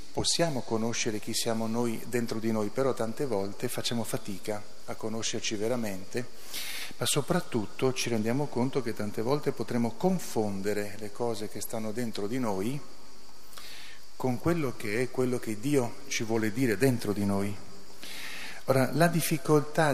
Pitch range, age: 110-130 Hz, 40-59